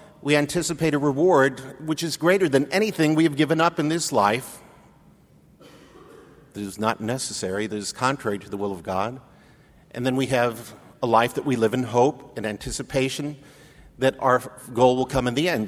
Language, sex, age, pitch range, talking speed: English, male, 50-69, 110-130 Hz, 190 wpm